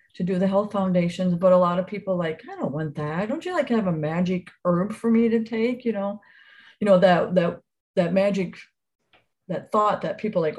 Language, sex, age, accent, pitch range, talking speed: English, female, 50-69, American, 180-215 Hz, 220 wpm